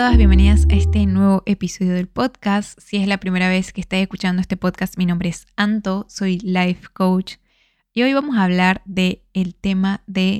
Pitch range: 180-200 Hz